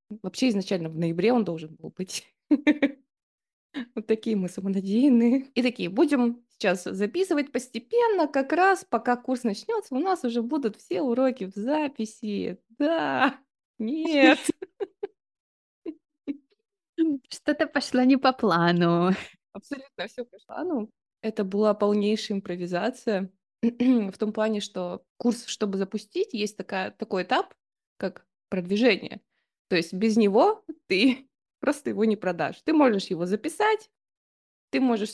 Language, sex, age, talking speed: Russian, female, 20-39, 125 wpm